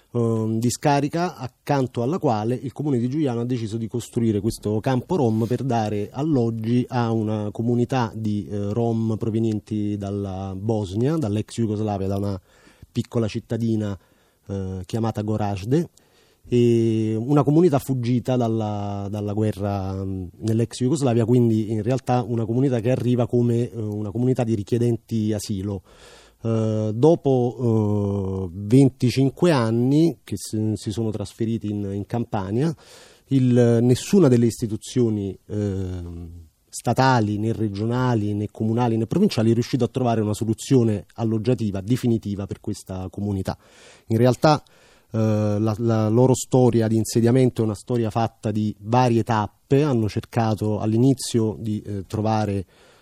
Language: Italian